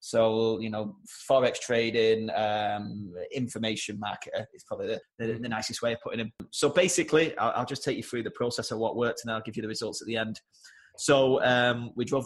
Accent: British